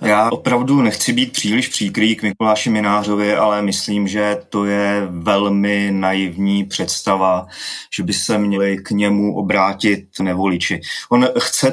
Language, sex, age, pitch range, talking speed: Czech, male, 30-49, 100-125 Hz, 140 wpm